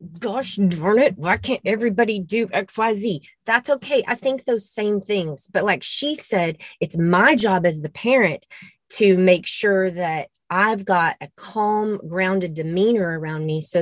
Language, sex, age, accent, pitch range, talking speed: English, female, 30-49, American, 165-210 Hz, 175 wpm